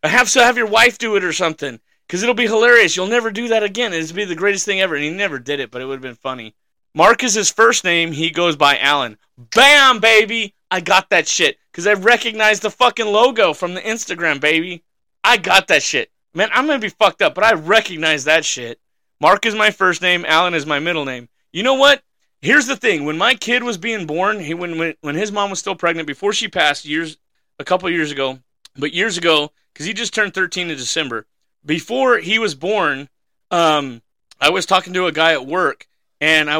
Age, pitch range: 30-49, 145-215 Hz